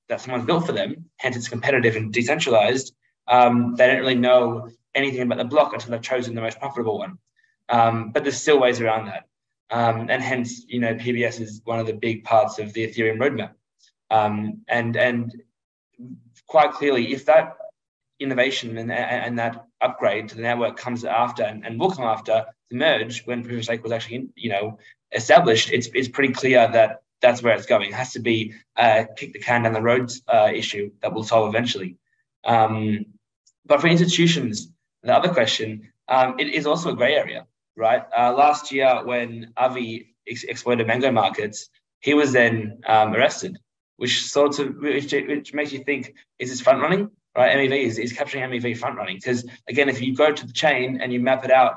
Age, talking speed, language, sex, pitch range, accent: 20-39, 190 wpm, English, male, 115-135 Hz, Australian